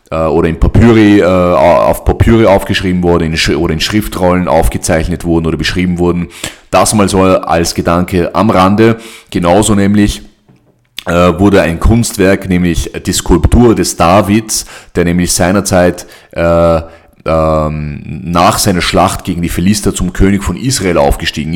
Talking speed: 130 wpm